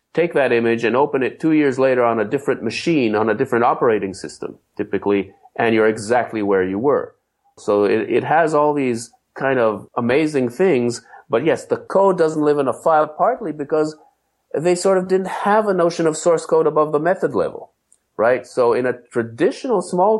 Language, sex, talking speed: English, male, 195 wpm